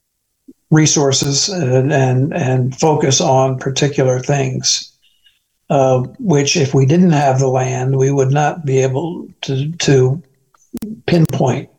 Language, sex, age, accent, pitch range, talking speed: English, male, 60-79, American, 130-145 Hz, 120 wpm